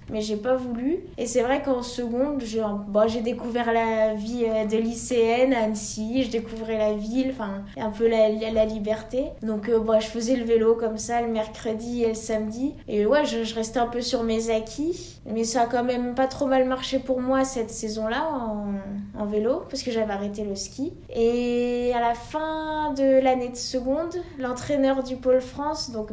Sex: female